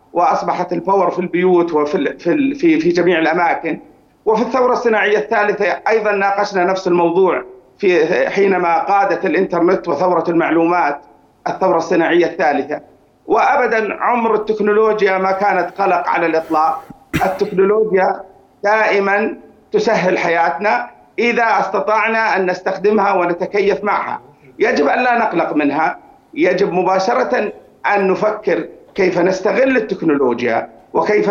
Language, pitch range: Arabic, 180-230 Hz